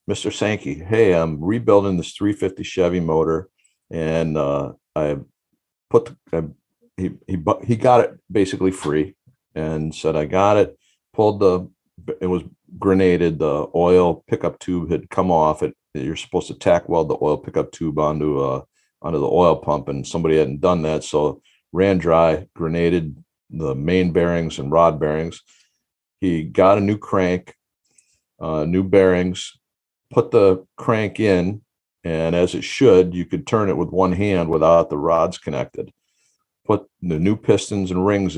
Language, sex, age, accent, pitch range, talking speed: English, male, 50-69, American, 80-95 Hz, 160 wpm